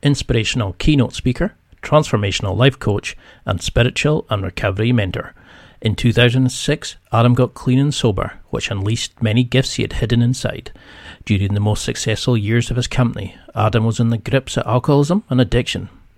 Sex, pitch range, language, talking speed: male, 105-125 Hz, English, 160 wpm